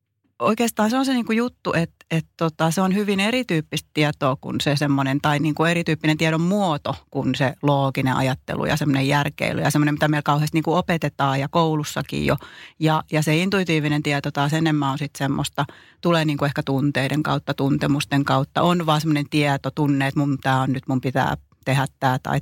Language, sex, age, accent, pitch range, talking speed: Finnish, female, 30-49, native, 145-180 Hz, 190 wpm